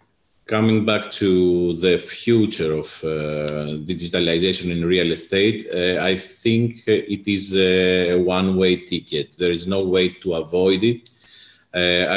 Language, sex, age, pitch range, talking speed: English, male, 30-49, 85-95 Hz, 140 wpm